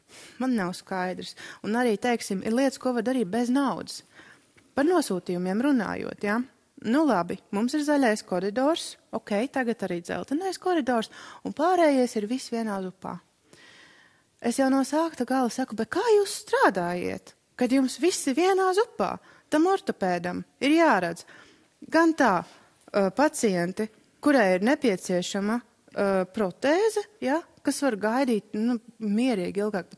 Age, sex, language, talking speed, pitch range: 30-49, female, English, 140 wpm, 205-295 Hz